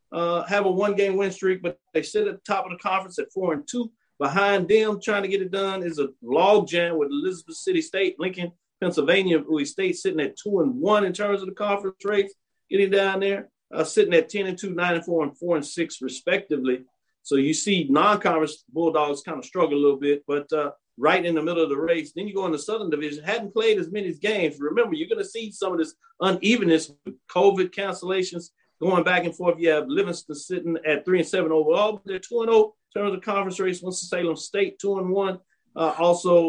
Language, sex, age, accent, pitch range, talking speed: English, male, 50-69, American, 155-200 Hz, 230 wpm